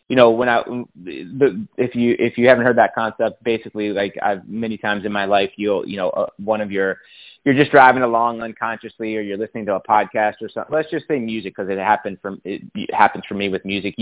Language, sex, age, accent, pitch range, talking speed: English, male, 20-39, American, 100-125 Hz, 225 wpm